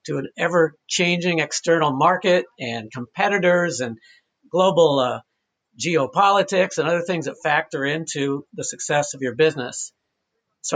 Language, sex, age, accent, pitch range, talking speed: English, male, 60-79, American, 145-175 Hz, 130 wpm